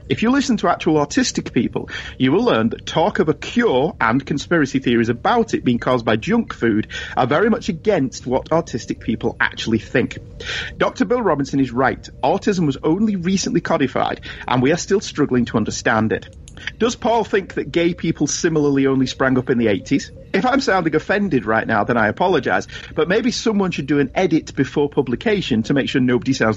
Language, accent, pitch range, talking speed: English, British, 120-180 Hz, 200 wpm